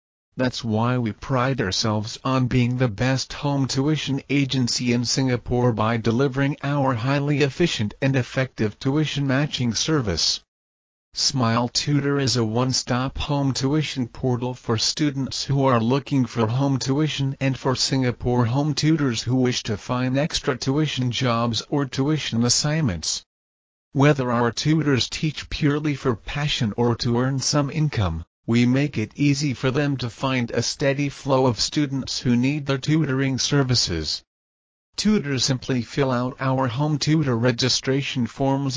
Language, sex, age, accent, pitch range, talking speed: English, male, 40-59, American, 115-140 Hz, 145 wpm